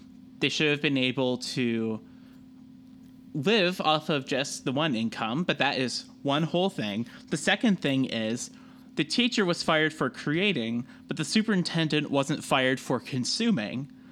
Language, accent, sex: English, American, male